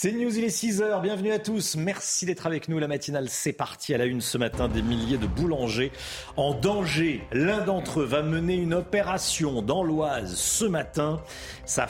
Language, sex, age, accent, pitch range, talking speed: French, male, 40-59, French, 110-165 Hz, 195 wpm